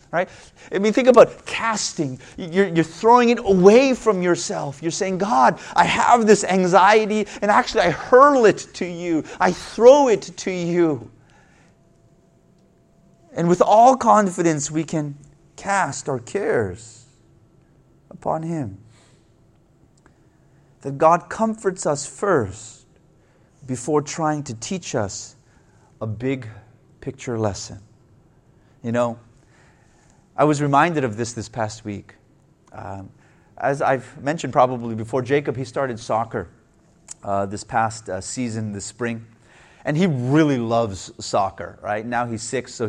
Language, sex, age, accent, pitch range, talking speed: English, male, 30-49, American, 115-175 Hz, 130 wpm